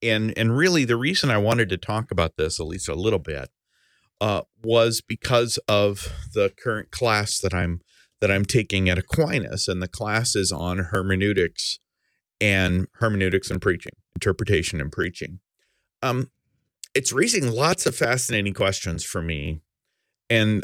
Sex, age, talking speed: male, 40-59, 150 wpm